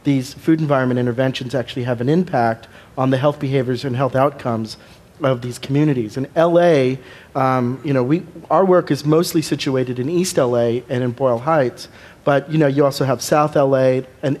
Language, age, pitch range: English, 40-59, 125-145 Hz